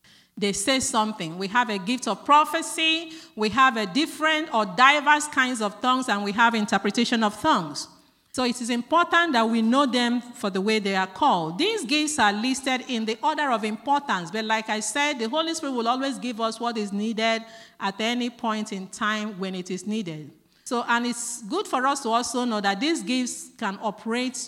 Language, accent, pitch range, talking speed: English, Nigerian, 210-270 Hz, 205 wpm